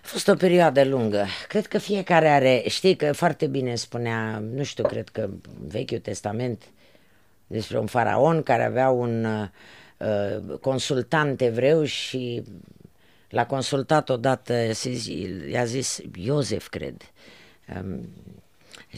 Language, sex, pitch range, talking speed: Romanian, female, 105-130 Hz, 130 wpm